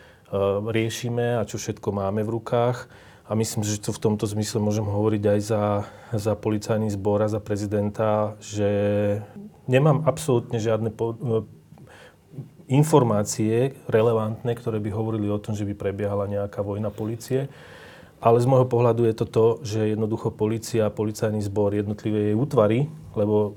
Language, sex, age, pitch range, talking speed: Slovak, male, 30-49, 105-120 Hz, 155 wpm